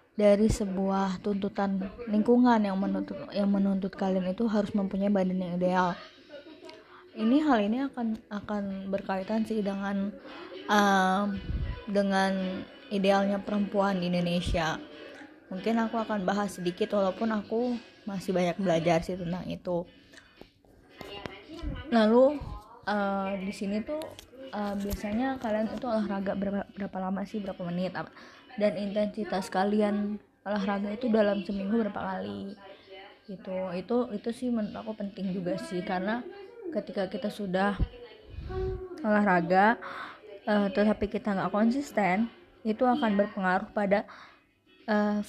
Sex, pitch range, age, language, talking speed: female, 195-220 Hz, 20-39, Indonesian, 120 wpm